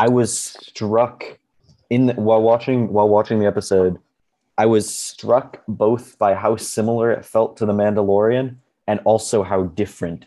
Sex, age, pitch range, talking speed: male, 20-39, 90-105 Hz, 160 wpm